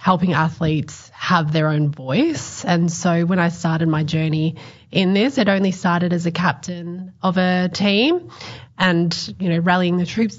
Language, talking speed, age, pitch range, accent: English, 175 wpm, 20-39, 165-190 Hz, Australian